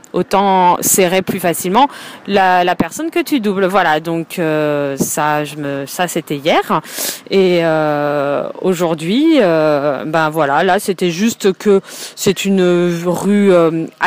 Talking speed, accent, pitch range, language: 140 wpm, French, 160-220 Hz, French